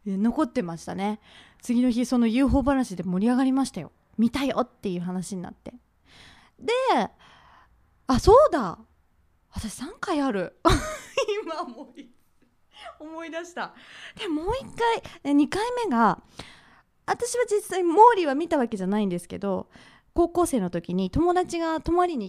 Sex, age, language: female, 20-39, Japanese